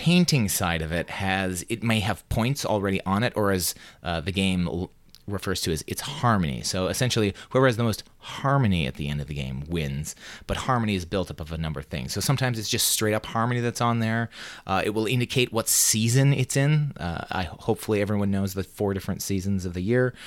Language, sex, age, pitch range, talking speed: English, male, 30-49, 95-120 Hz, 230 wpm